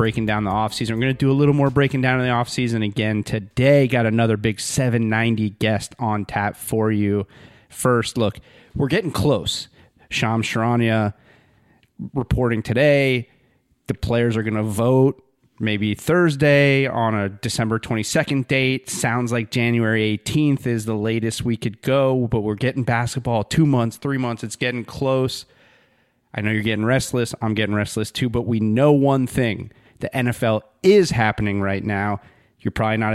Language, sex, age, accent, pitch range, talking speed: English, male, 30-49, American, 110-140 Hz, 165 wpm